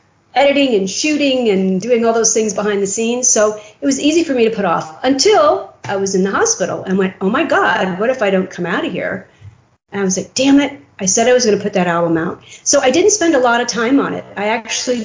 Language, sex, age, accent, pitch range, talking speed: English, female, 40-59, American, 180-240 Hz, 265 wpm